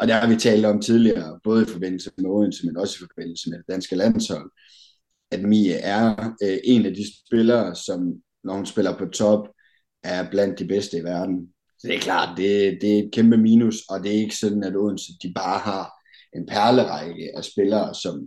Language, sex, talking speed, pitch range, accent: Danish, male, 205 wpm, 95-110 Hz, native